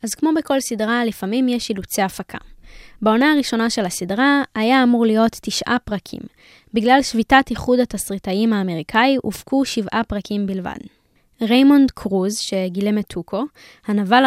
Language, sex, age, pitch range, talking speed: Hebrew, female, 10-29, 200-245 Hz, 135 wpm